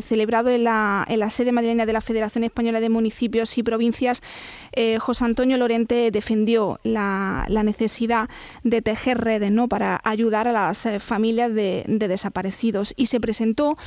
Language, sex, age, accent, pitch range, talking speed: Spanish, female, 20-39, Spanish, 225-255 Hz, 160 wpm